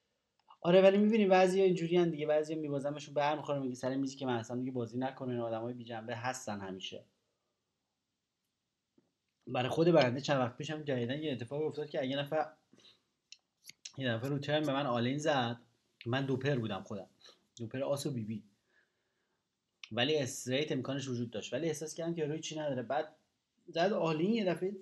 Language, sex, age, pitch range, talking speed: Persian, male, 30-49, 130-175 Hz, 175 wpm